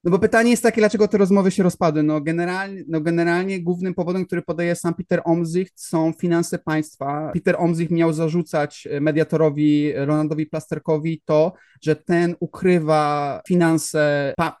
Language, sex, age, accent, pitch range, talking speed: Polish, male, 30-49, native, 165-190 Hz, 150 wpm